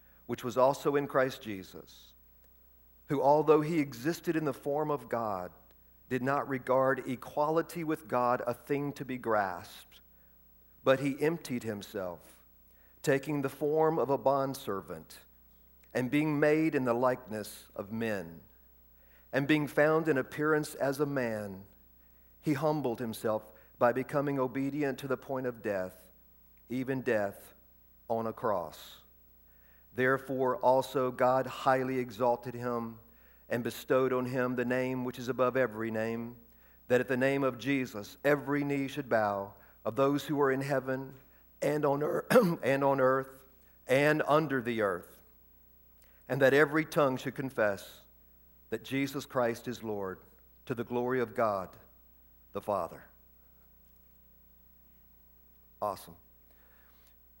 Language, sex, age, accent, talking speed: English, male, 50-69, American, 135 wpm